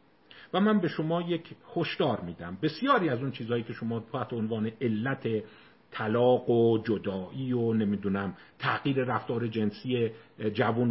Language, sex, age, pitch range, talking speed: Persian, male, 50-69, 100-135 Hz, 140 wpm